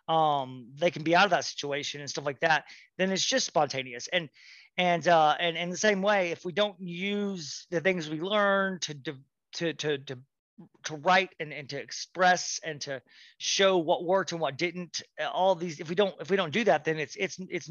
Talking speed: 215 wpm